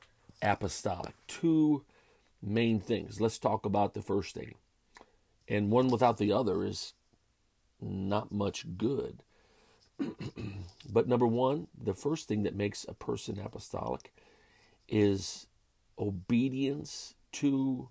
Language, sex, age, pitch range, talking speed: English, male, 40-59, 105-130 Hz, 110 wpm